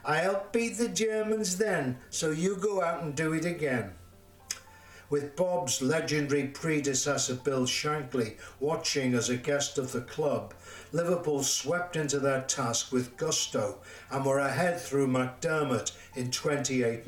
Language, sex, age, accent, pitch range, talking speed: English, male, 60-79, British, 120-155 Hz, 145 wpm